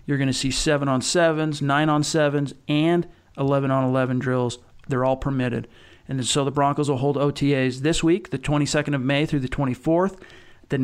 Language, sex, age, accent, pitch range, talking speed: English, male, 40-59, American, 130-155 Hz, 175 wpm